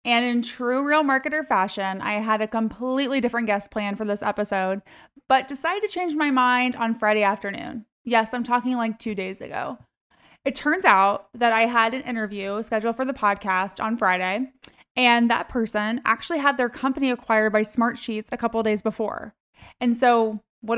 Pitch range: 215-265 Hz